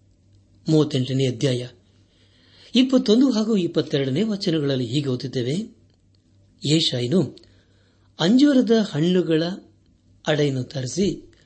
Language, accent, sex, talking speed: Kannada, native, male, 65 wpm